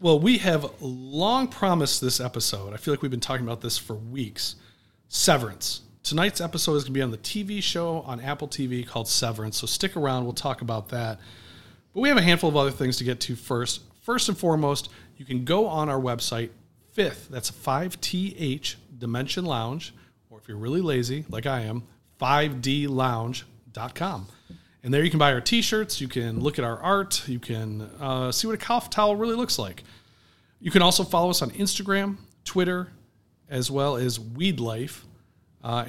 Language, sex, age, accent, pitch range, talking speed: English, male, 40-59, American, 115-155 Hz, 190 wpm